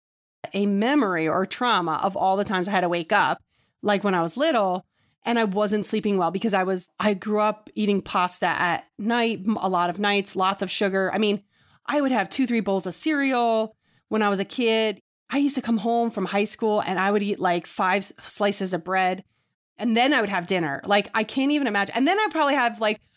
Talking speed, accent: 235 wpm, American